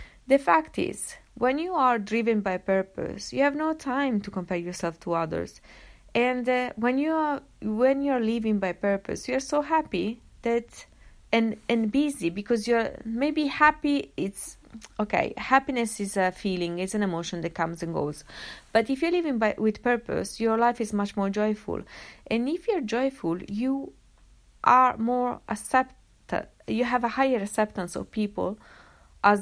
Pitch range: 185-255 Hz